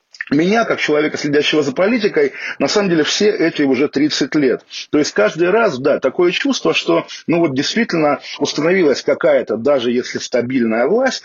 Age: 40-59